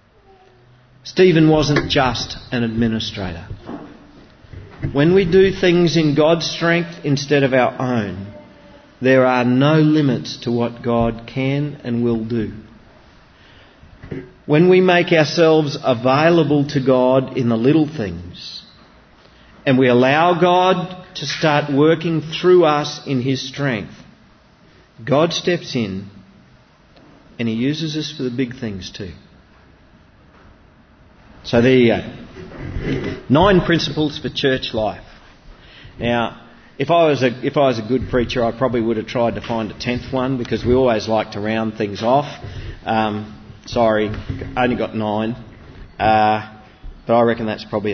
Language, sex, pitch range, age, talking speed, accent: English, male, 110-145 Hz, 40-59, 140 wpm, Australian